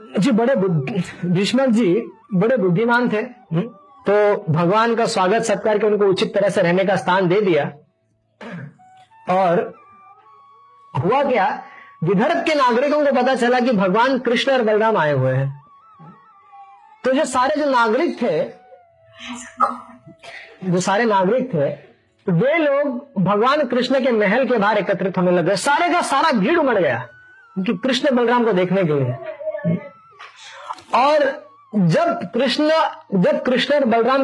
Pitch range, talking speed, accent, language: 205-310 Hz, 140 wpm, native, Hindi